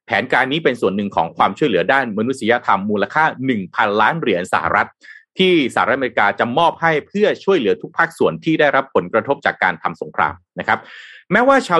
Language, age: Thai, 30-49